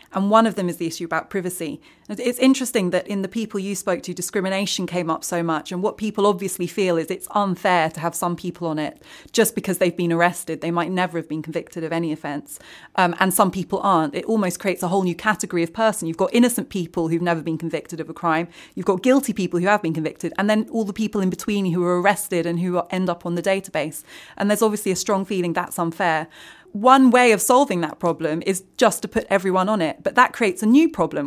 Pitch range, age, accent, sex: 175-225 Hz, 20-39, British, female